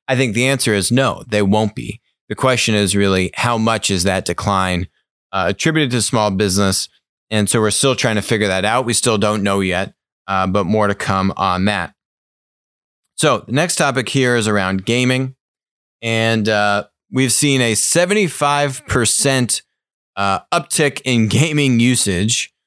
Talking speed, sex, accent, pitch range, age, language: 165 wpm, male, American, 100-120 Hz, 30-49, English